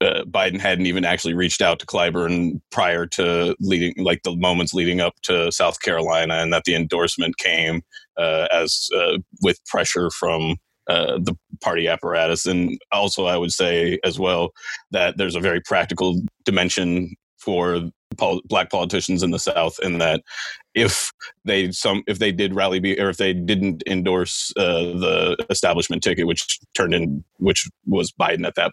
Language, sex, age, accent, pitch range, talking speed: English, male, 30-49, American, 85-95 Hz, 170 wpm